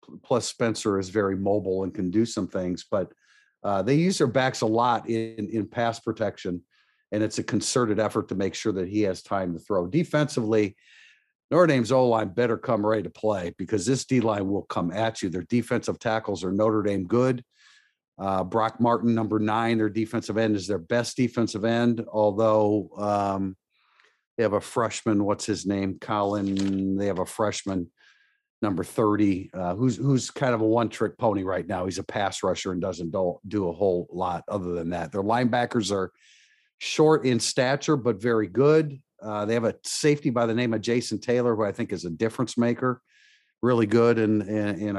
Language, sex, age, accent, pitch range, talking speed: English, male, 50-69, American, 105-130 Hz, 190 wpm